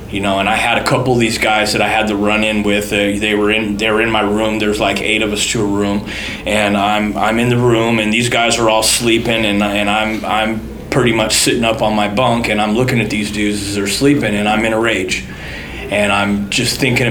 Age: 30-49